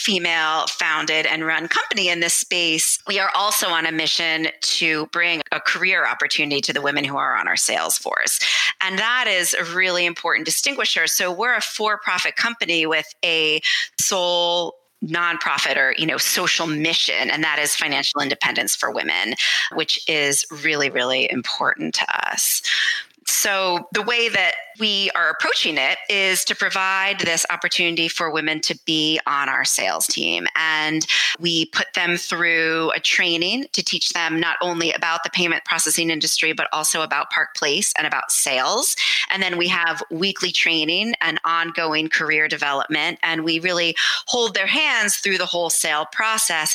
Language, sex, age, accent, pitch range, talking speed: English, female, 30-49, American, 160-190 Hz, 165 wpm